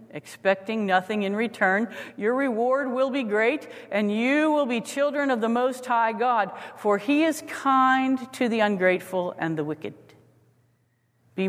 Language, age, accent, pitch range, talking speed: English, 50-69, American, 145-210 Hz, 155 wpm